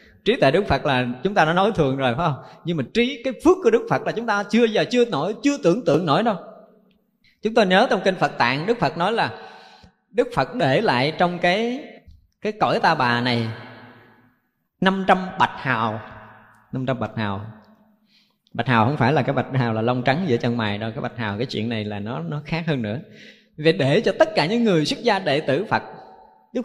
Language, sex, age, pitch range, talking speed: Vietnamese, male, 20-39, 125-190 Hz, 225 wpm